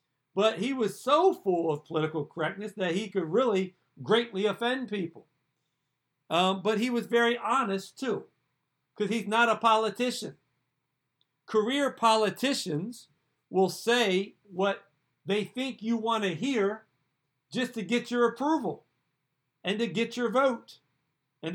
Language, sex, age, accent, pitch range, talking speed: English, male, 50-69, American, 165-220 Hz, 135 wpm